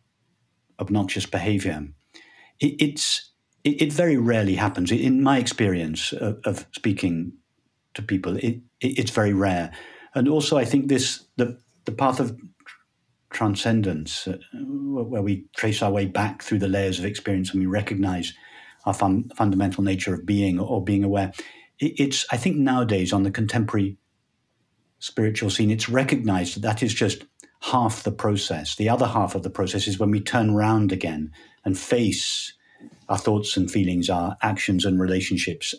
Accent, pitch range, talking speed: British, 95-115 Hz, 160 wpm